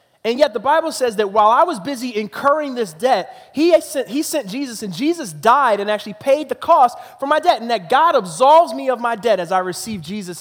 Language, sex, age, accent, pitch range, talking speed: English, male, 20-39, American, 155-230 Hz, 230 wpm